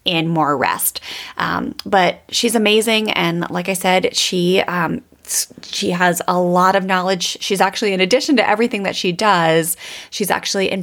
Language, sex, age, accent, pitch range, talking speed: English, female, 20-39, American, 170-210 Hz, 170 wpm